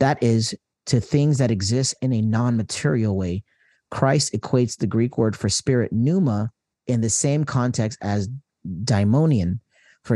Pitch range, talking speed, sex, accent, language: 105-130 Hz, 150 wpm, male, American, English